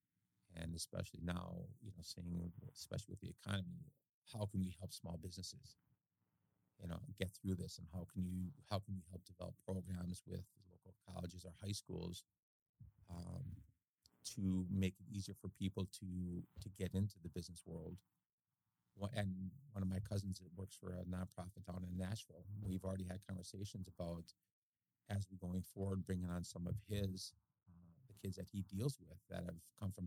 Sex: male